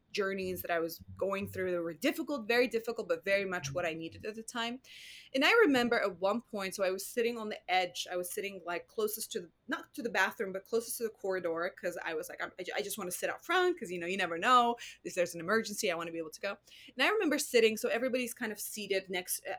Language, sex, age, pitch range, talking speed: English, female, 20-39, 175-245 Hz, 270 wpm